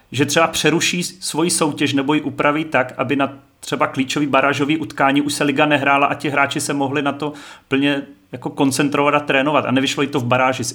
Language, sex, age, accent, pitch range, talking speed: Czech, male, 30-49, native, 120-140 Hz, 210 wpm